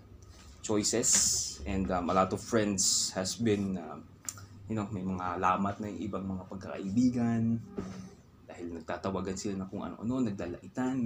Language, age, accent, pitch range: Filipino, 20-39, native, 95-115 Hz